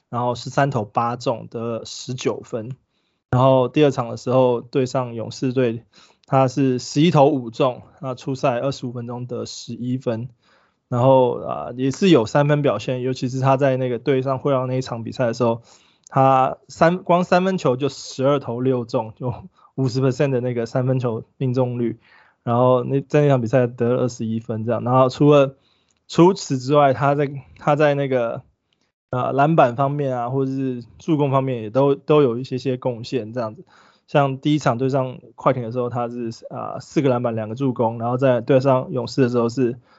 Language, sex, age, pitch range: Chinese, male, 20-39, 120-140 Hz